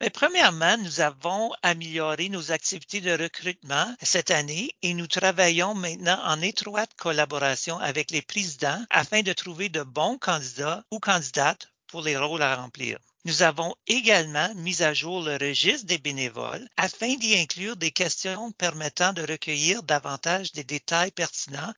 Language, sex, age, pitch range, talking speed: English, male, 60-79, 150-185 Hz, 150 wpm